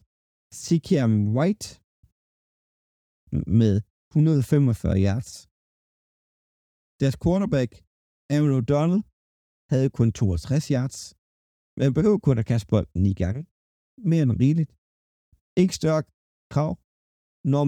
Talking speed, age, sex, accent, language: 95 wpm, 50-69, male, native, Danish